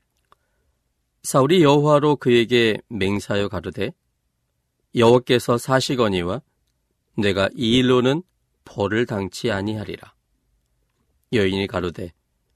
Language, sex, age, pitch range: Korean, male, 40-59, 80-125 Hz